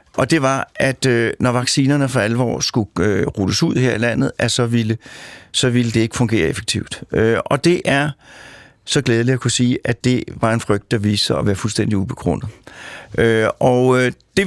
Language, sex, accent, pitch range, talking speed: Danish, male, native, 115-135 Hz, 205 wpm